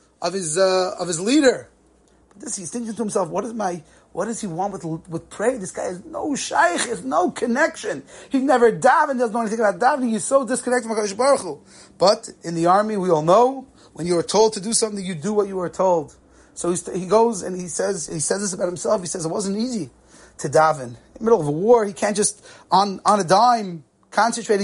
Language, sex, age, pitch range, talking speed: English, male, 30-49, 165-220 Hz, 230 wpm